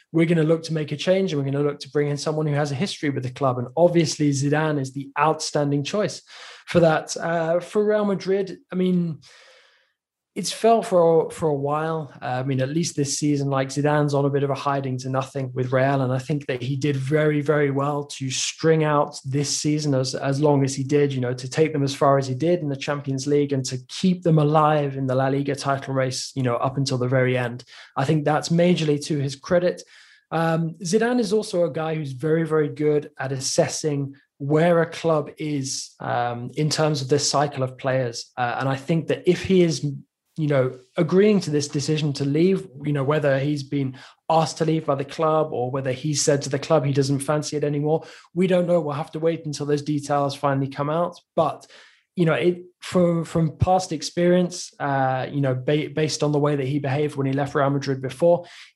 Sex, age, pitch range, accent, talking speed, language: male, 20-39, 140-160 Hz, British, 230 wpm, English